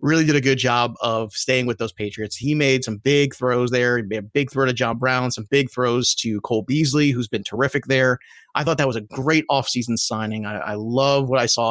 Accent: American